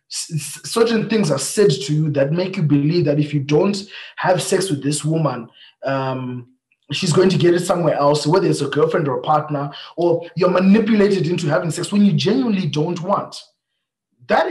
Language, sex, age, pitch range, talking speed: English, male, 20-39, 150-195 Hz, 190 wpm